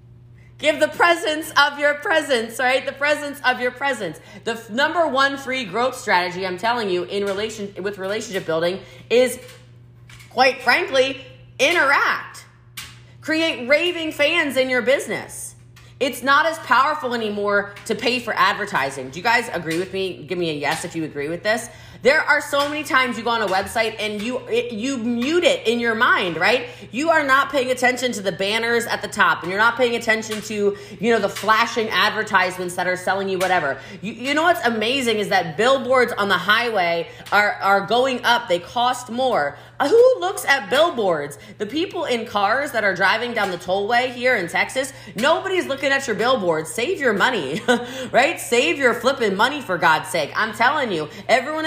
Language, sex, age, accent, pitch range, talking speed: English, female, 30-49, American, 190-265 Hz, 190 wpm